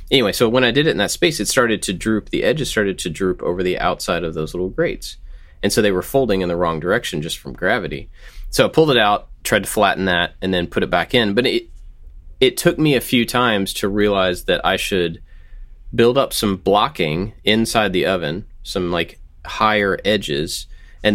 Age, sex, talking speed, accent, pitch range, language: 30-49, male, 220 wpm, American, 75-100 Hz, English